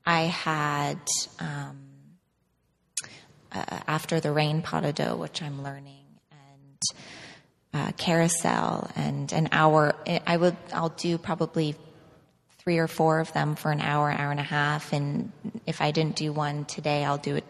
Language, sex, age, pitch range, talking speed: English, female, 20-39, 150-165 Hz, 160 wpm